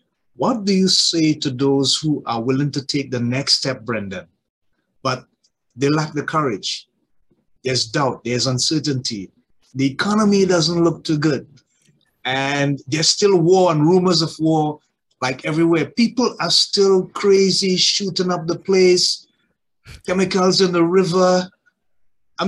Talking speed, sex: 140 wpm, male